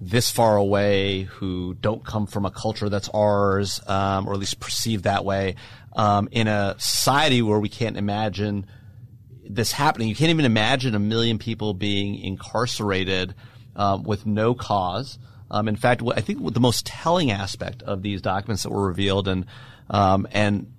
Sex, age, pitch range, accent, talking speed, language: male, 30-49, 105-130 Hz, American, 175 wpm, English